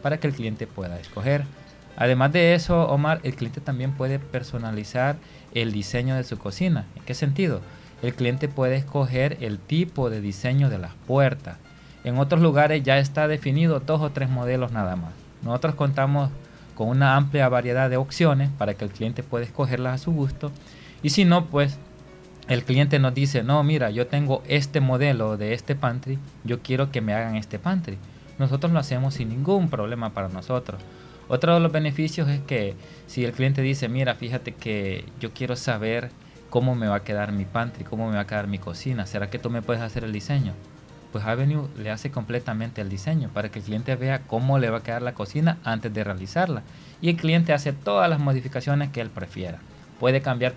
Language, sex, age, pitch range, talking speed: Spanish, male, 30-49, 115-145 Hz, 200 wpm